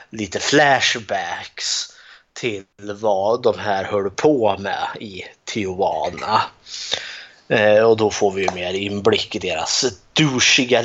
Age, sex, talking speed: 20-39, male, 120 wpm